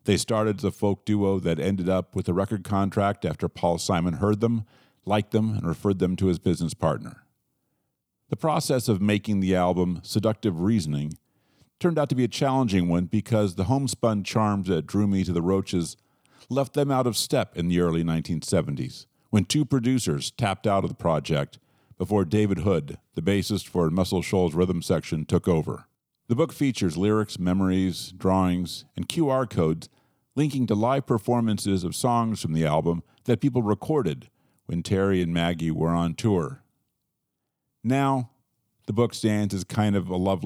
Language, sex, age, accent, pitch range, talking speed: English, male, 50-69, American, 90-120 Hz, 175 wpm